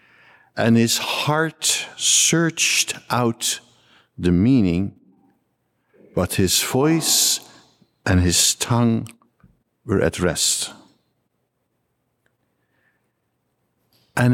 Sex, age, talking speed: male, 60-79, 70 wpm